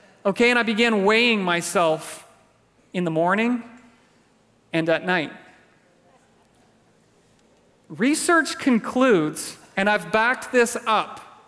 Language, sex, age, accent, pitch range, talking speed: English, male, 40-59, American, 170-220 Hz, 100 wpm